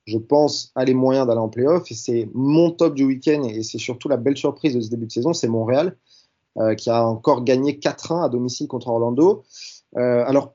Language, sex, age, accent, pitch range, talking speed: French, male, 20-39, French, 125-150 Hz, 220 wpm